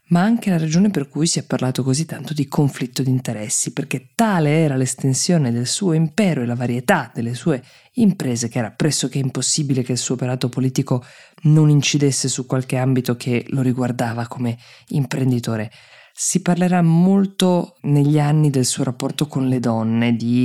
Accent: native